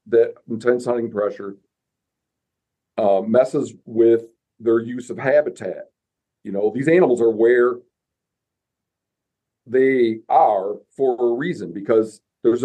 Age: 50-69